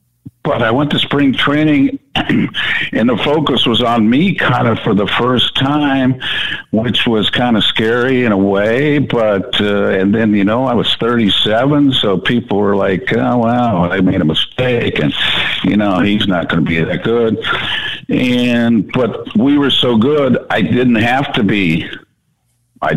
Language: English